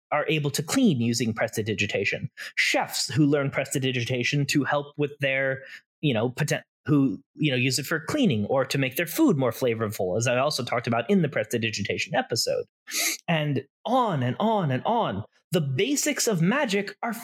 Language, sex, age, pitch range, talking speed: English, male, 30-49, 145-230 Hz, 175 wpm